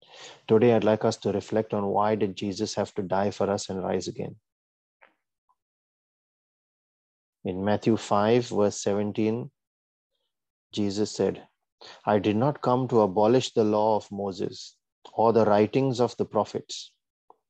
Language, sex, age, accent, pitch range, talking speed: English, male, 30-49, Indian, 100-115 Hz, 140 wpm